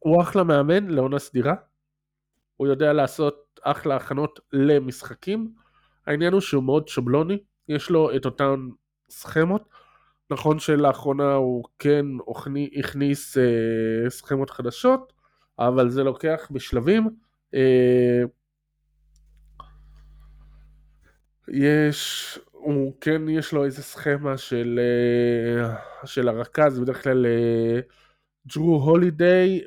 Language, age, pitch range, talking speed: Hebrew, 20-39, 130-155 Hz, 95 wpm